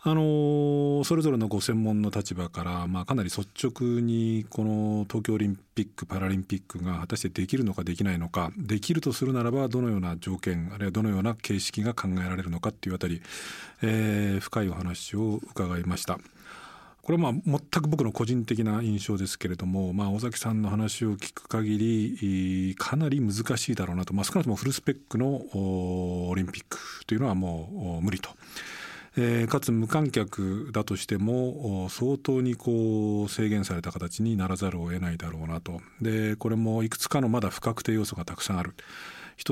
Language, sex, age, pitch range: Japanese, male, 40-59, 95-115 Hz